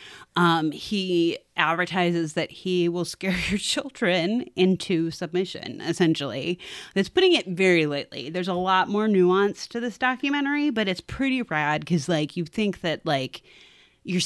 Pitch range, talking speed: 160-200 Hz, 150 wpm